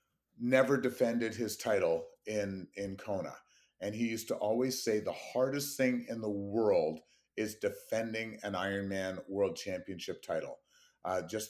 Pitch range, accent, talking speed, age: 105-140 Hz, American, 145 wpm, 30-49